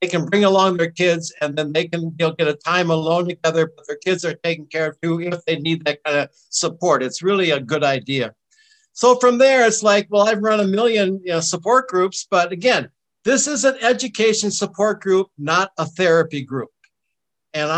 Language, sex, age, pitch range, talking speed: English, male, 60-79, 155-205 Hz, 215 wpm